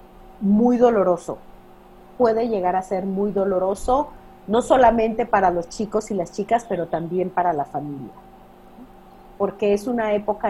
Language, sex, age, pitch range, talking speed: Spanish, female, 40-59, 190-235 Hz, 145 wpm